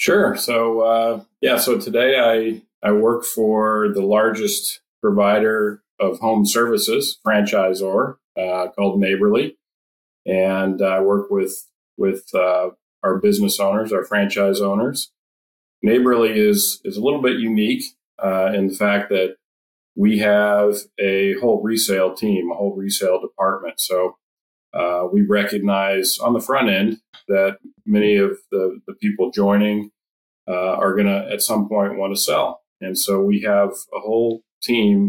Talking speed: 145 wpm